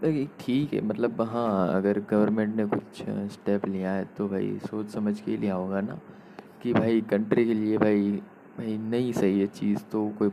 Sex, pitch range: male, 100-110 Hz